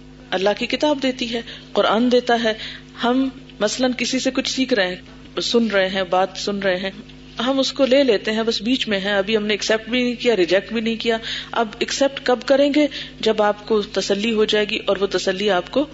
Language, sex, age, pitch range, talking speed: Urdu, female, 40-59, 190-245 Hz, 230 wpm